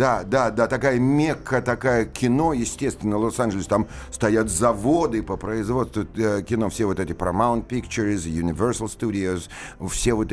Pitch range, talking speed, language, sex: 105-130 Hz, 155 wpm, Russian, male